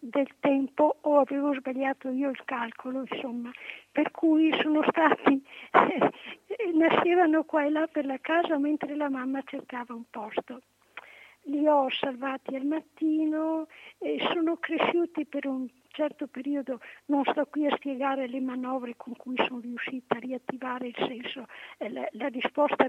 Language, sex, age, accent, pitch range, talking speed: Italian, female, 50-69, native, 255-305 Hz, 155 wpm